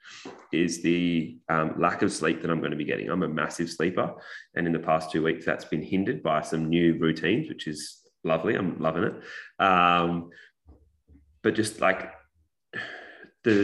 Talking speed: 175 wpm